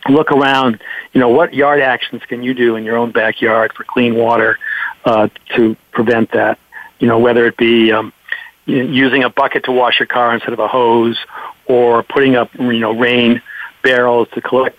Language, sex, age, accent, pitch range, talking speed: English, male, 50-69, American, 115-130 Hz, 190 wpm